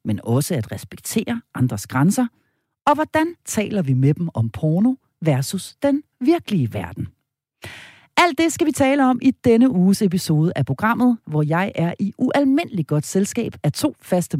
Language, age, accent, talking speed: Danish, 40-59, native, 165 wpm